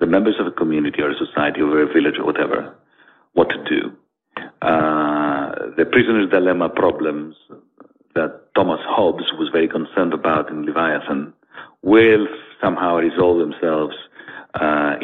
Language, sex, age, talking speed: English, male, 50-69, 140 wpm